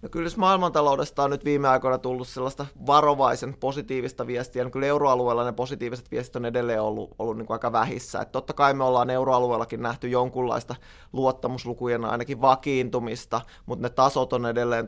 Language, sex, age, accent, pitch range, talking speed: Finnish, male, 20-39, native, 125-140 Hz, 170 wpm